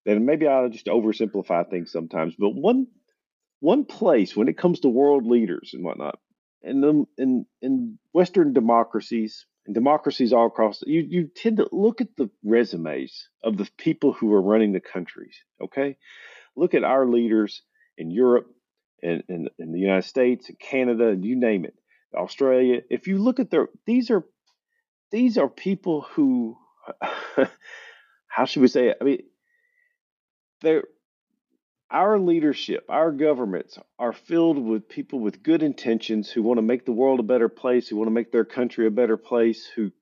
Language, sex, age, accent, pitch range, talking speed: English, male, 50-69, American, 115-185 Hz, 170 wpm